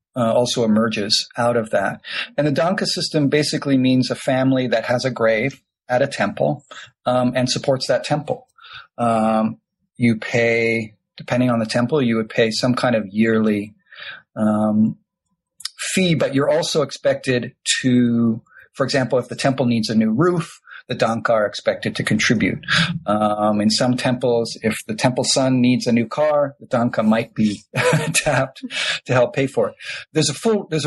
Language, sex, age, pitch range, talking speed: English, male, 40-59, 115-140 Hz, 170 wpm